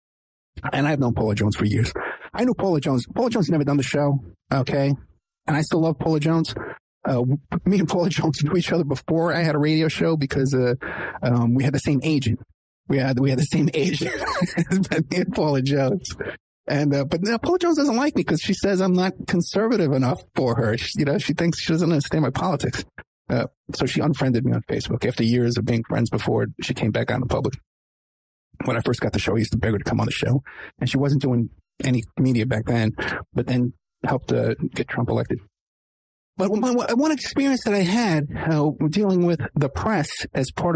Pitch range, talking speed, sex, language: 125-170 Hz, 220 wpm, male, English